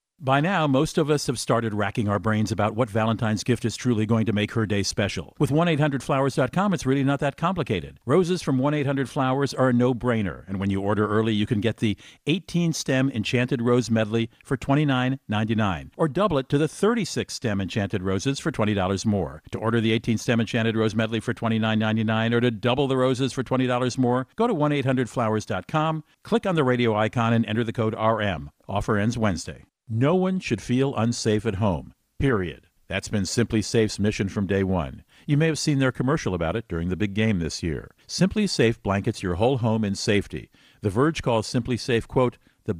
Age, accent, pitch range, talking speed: 50-69, American, 105-135 Hz, 195 wpm